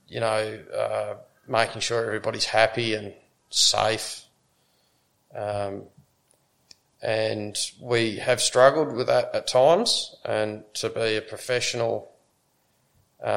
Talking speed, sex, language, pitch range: 110 wpm, male, English, 105-125 Hz